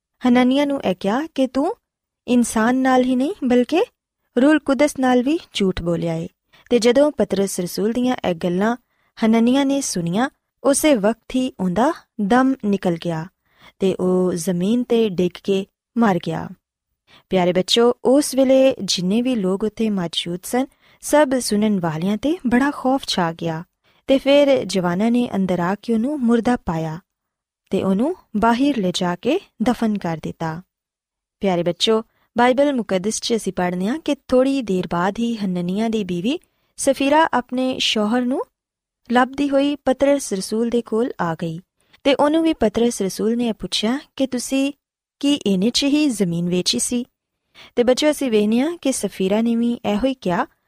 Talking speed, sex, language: 155 wpm, female, Punjabi